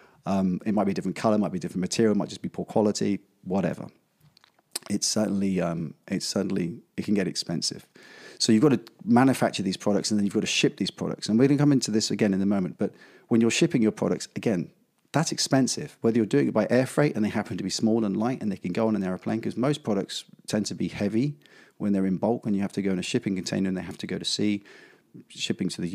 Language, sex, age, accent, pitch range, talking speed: English, male, 30-49, British, 95-115 Hz, 270 wpm